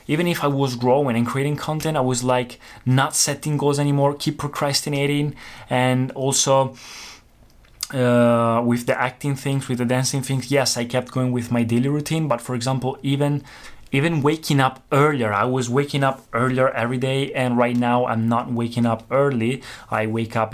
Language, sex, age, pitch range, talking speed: Italian, male, 20-39, 115-135 Hz, 180 wpm